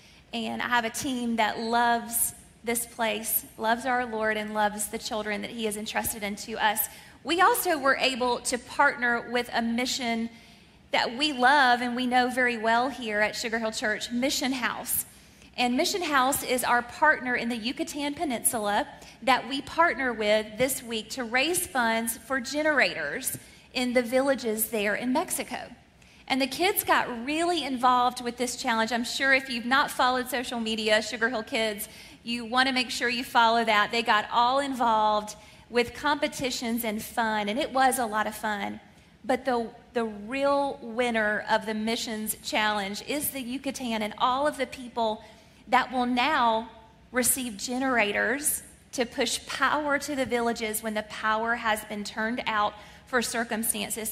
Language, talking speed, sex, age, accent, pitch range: English, 170 wpm, female, 30-49, American, 220-260 Hz